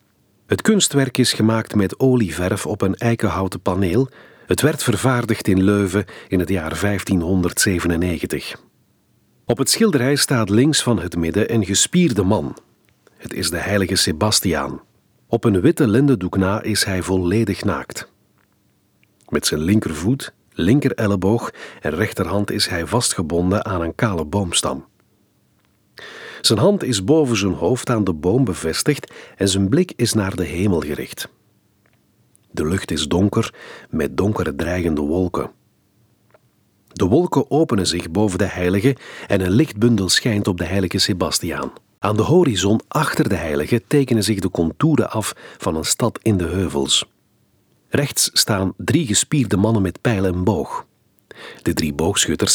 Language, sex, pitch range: Dutch, male, 90-115 Hz